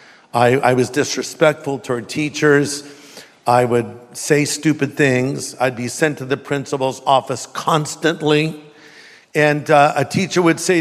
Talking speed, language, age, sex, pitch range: 140 wpm, English, 60-79, male, 150-230 Hz